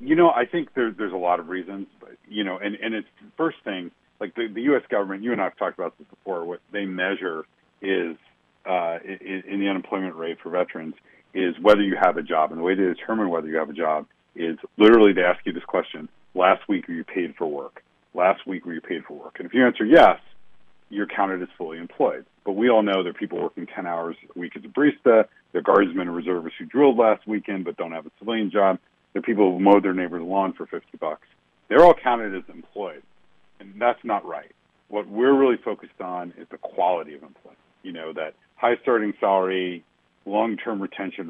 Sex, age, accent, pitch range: male, 40-59, American, 90-110 Hz